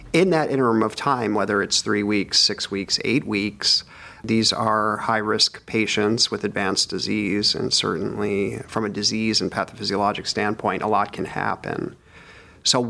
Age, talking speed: 40-59, 155 wpm